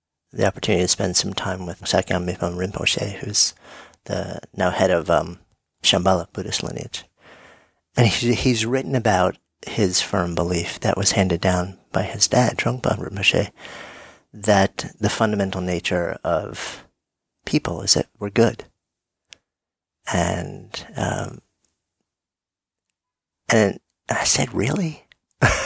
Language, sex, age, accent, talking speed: English, male, 50-69, American, 120 wpm